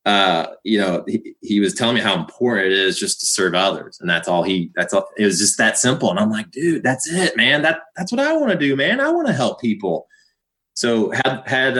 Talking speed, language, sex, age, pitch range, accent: 255 wpm, English, male, 20-39, 95-135 Hz, American